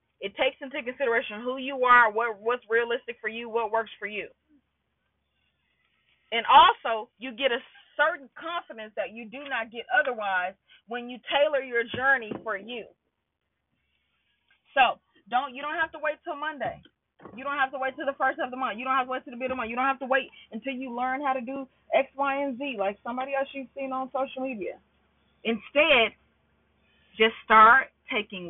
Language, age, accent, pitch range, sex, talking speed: English, 30-49, American, 225-275 Hz, female, 200 wpm